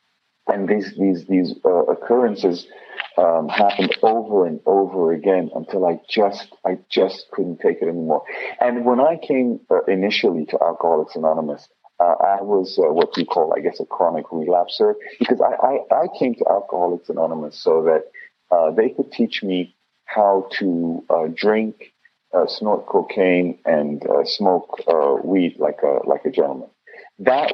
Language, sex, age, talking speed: English, male, 40-59, 165 wpm